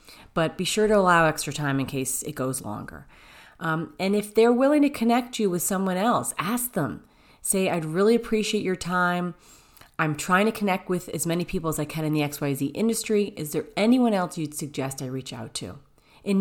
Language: English